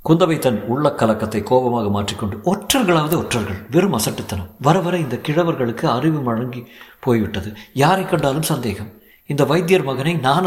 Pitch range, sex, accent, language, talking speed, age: 130-180 Hz, male, native, Tamil, 140 wpm, 50-69